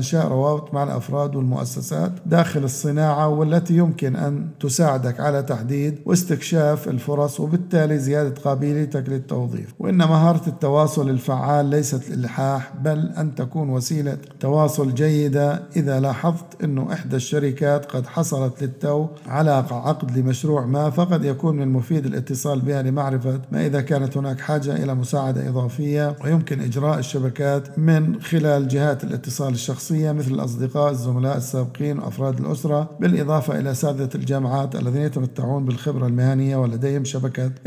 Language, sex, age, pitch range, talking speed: Arabic, male, 50-69, 130-150 Hz, 130 wpm